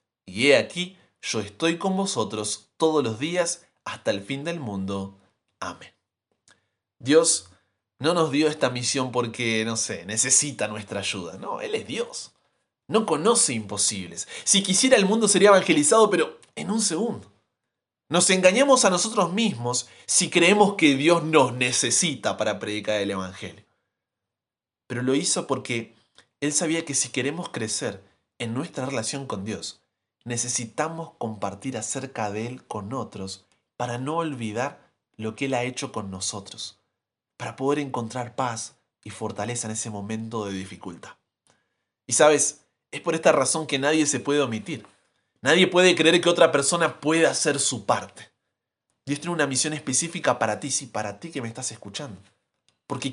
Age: 20-39